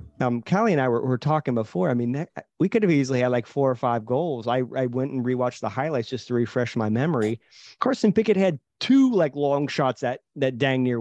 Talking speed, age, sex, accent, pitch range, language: 240 wpm, 30-49, male, American, 115-135 Hz, English